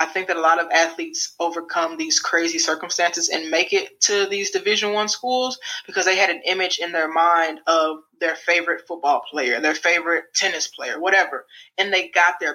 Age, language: 20-39, English